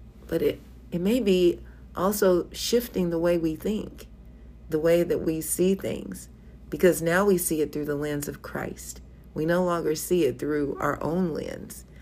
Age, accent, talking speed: 50-69, American, 180 wpm